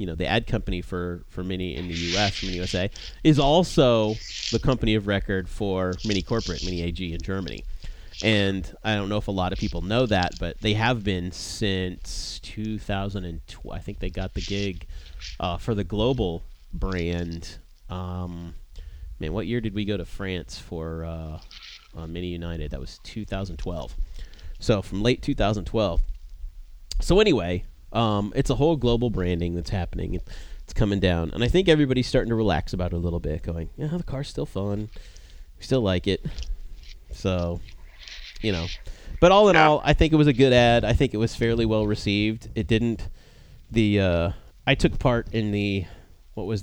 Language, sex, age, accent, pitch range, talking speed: English, male, 30-49, American, 85-110 Hz, 185 wpm